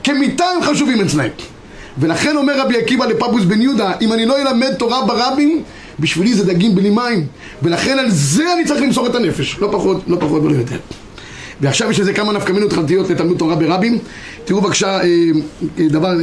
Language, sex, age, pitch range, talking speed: Hebrew, male, 30-49, 170-235 Hz, 180 wpm